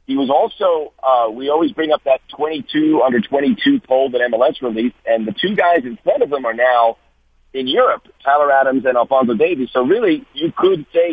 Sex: male